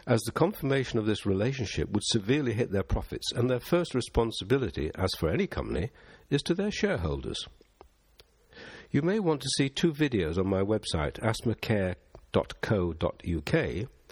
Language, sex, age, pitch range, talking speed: English, male, 60-79, 95-125 Hz, 145 wpm